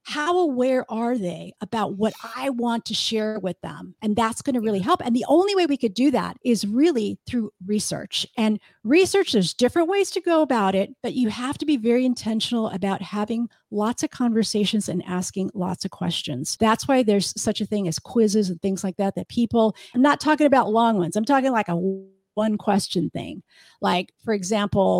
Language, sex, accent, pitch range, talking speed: English, female, American, 200-260 Hz, 205 wpm